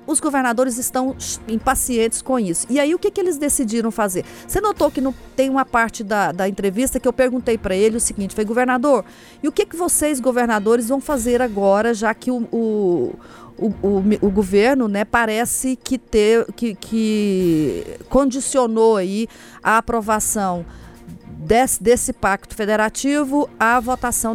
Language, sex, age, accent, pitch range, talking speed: Portuguese, female, 40-59, Brazilian, 205-255 Hz, 145 wpm